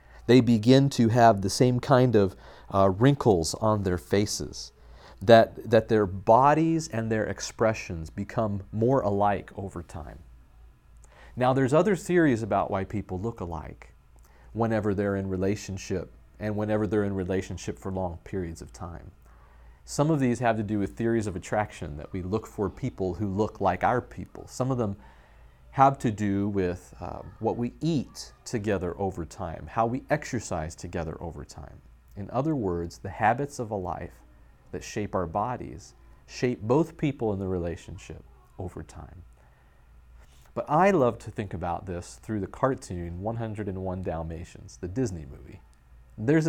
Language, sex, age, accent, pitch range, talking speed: English, male, 40-59, American, 85-115 Hz, 160 wpm